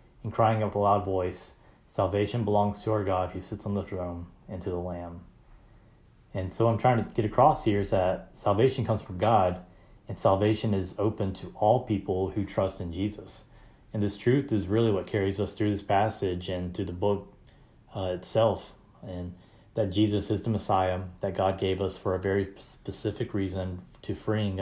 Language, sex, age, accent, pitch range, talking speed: English, male, 30-49, American, 95-105 Hz, 195 wpm